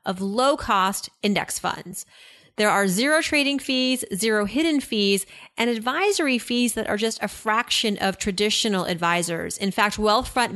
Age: 30-49